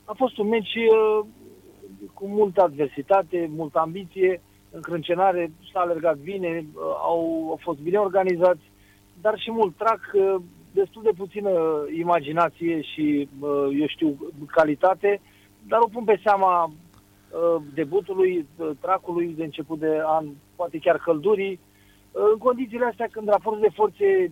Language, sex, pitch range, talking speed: Romanian, male, 145-200 Hz, 125 wpm